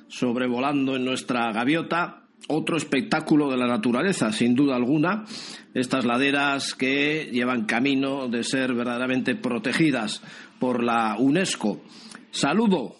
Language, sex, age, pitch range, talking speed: Spanish, male, 50-69, 140-185 Hz, 115 wpm